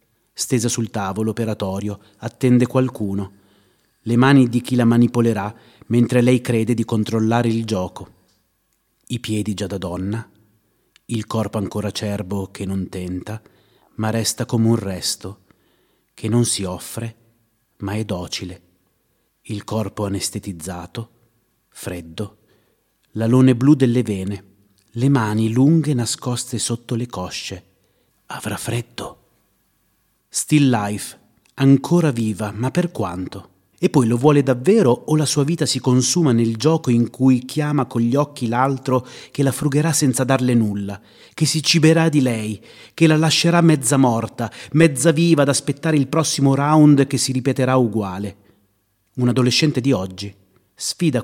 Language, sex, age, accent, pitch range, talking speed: Italian, male, 30-49, native, 105-135 Hz, 140 wpm